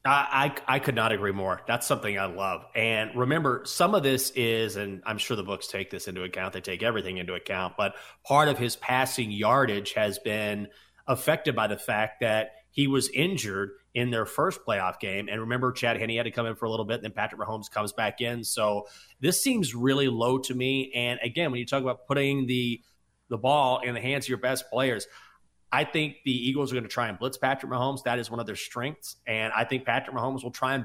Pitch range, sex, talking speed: 110-135 Hz, male, 235 wpm